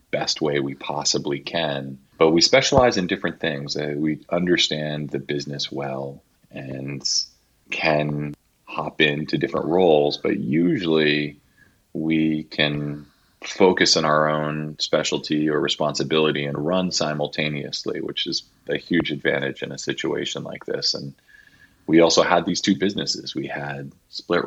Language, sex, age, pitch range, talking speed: English, male, 30-49, 70-80 Hz, 135 wpm